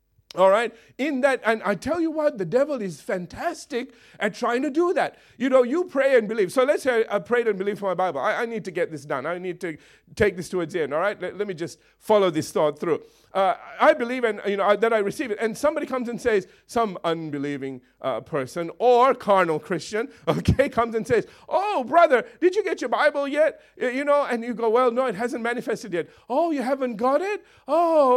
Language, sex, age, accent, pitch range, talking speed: English, male, 50-69, American, 190-270 Hz, 235 wpm